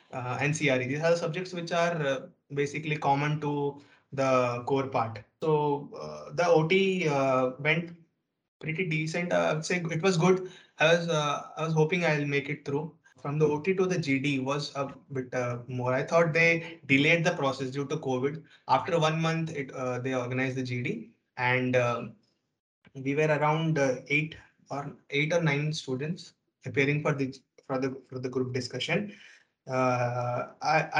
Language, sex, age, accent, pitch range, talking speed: English, male, 20-39, Indian, 130-155 Hz, 175 wpm